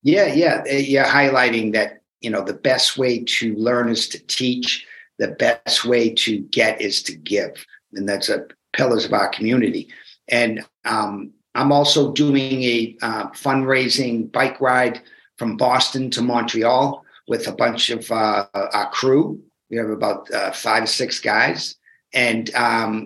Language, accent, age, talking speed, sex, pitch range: English, American, 50-69, 160 wpm, male, 120-140 Hz